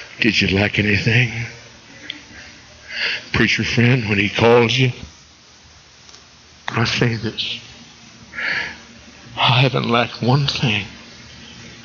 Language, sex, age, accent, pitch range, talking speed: English, male, 60-79, American, 105-125 Hz, 95 wpm